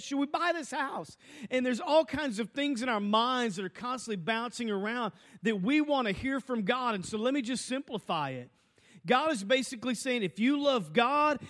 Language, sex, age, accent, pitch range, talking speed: English, male, 40-59, American, 180-250 Hz, 215 wpm